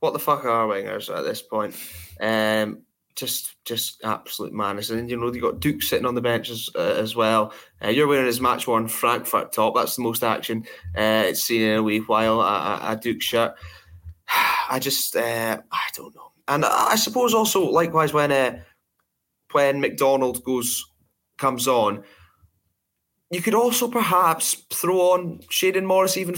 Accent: British